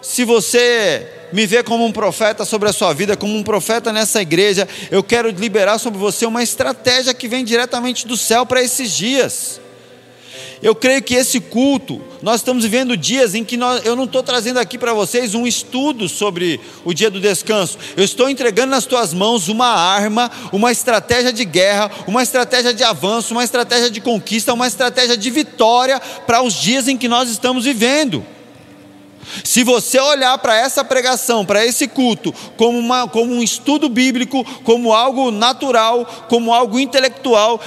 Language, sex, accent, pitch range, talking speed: Portuguese, male, Brazilian, 195-250 Hz, 175 wpm